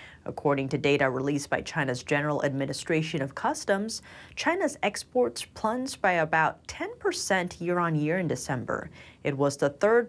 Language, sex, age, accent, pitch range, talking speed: English, female, 30-49, American, 150-210 Hz, 145 wpm